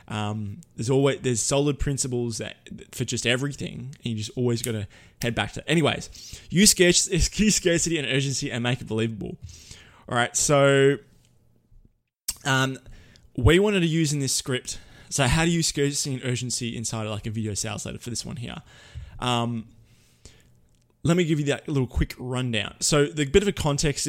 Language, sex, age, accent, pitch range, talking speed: English, male, 20-39, Australian, 110-140 Hz, 185 wpm